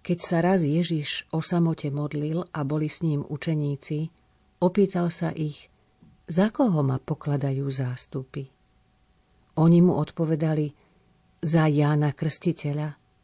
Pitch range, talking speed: 145-170 Hz, 120 wpm